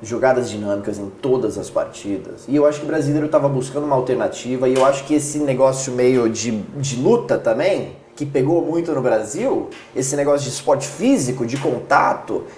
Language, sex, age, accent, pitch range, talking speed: Portuguese, male, 20-39, Brazilian, 125-190 Hz, 185 wpm